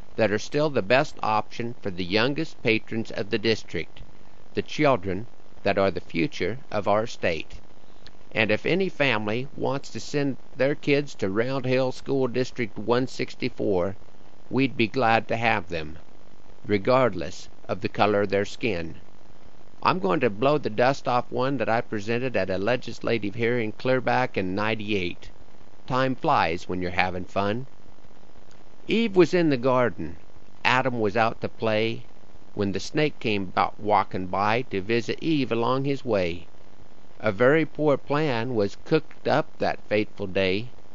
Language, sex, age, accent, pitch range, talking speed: English, male, 50-69, American, 100-135 Hz, 160 wpm